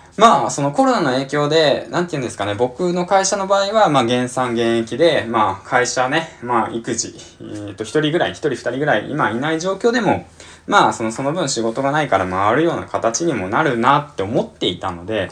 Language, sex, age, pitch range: Japanese, male, 20-39, 95-145 Hz